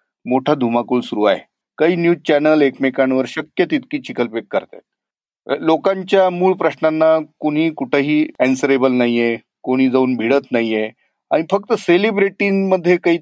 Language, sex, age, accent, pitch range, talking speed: Marathi, male, 40-59, native, 130-170 Hz, 80 wpm